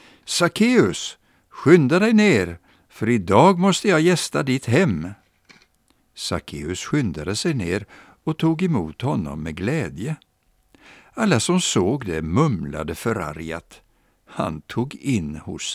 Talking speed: 120 wpm